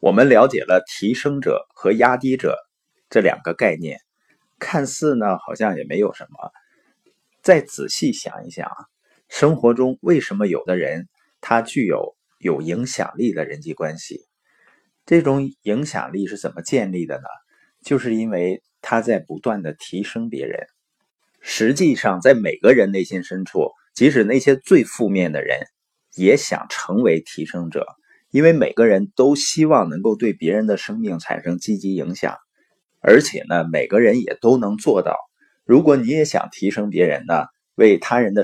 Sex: male